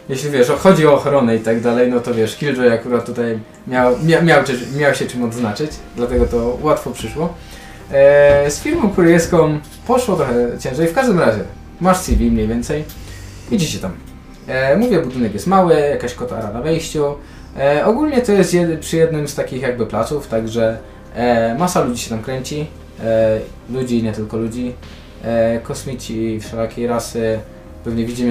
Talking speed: 150 wpm